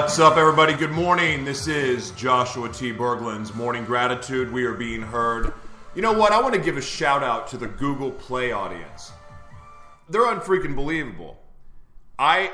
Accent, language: American, English